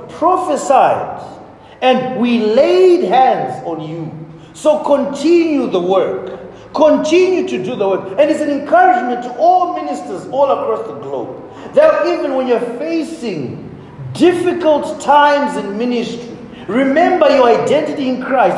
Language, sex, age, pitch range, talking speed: English, male, 40-59, 190-290 Hz, 130 wpm